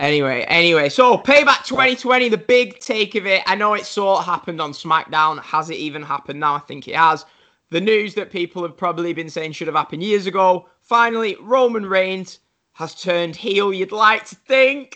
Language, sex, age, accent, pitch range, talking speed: English, male, 10-29, British, 170-225 Hz, 200 wpm